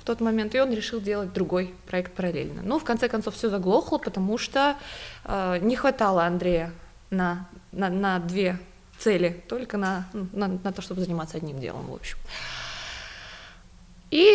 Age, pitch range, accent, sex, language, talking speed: 20-39, 180-225 Hz, native, female, Russian, 165 wpm